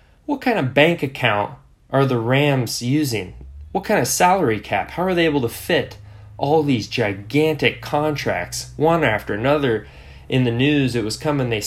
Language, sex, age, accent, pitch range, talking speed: English, male, 10-29, American, 95-125 Hz, 175 wpm